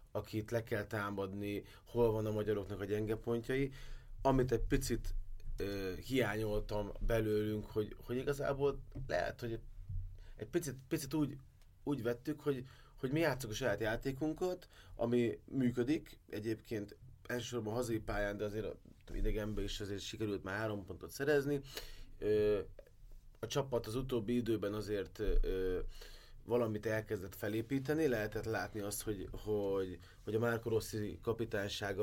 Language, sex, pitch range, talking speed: Hungarian, male, 105-125 Hz, 135 wpm